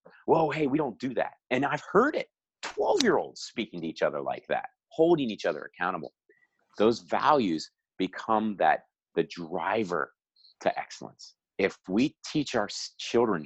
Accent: American